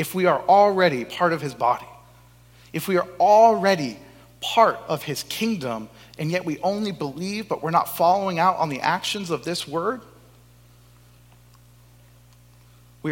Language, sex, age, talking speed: English, male, 30-49, 150 wpm